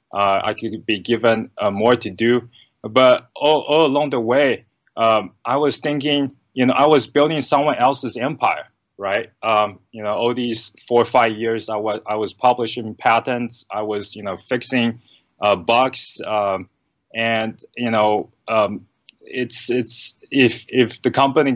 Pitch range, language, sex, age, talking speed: 105-125 Hz, English, male, 20-39, 170 wpm